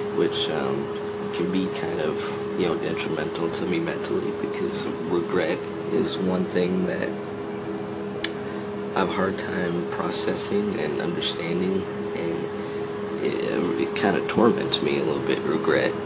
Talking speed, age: 140 wpm, 20-39